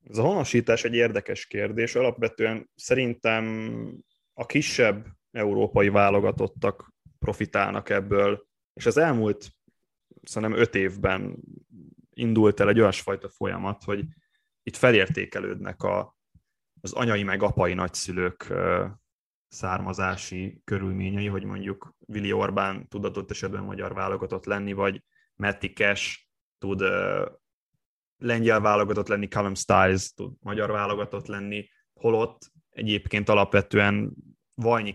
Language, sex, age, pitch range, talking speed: Hungarian, male, 20-39, 95-115 Hz, 105 wpm